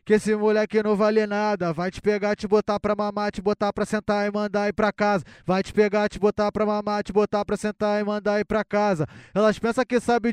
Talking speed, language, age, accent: 245 wpm, Portuguese, 20-39, Brazilian